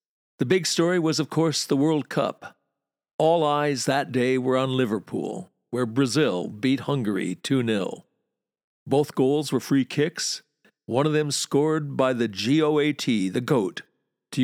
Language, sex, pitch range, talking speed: English, male, 110-145 Hz, 150 wpm